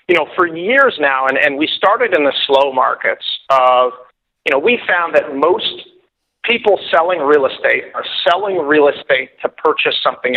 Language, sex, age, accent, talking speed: English, male, 40-59, American, 180 wpm